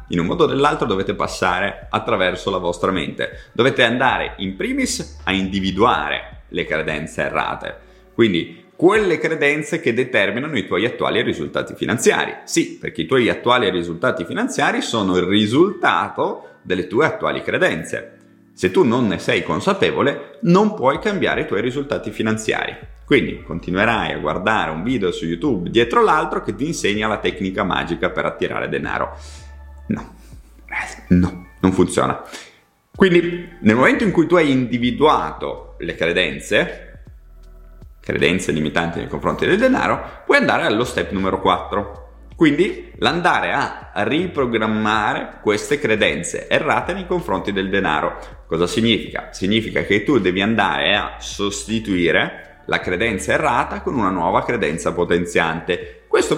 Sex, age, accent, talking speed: male, 30-49, native, 140 wpm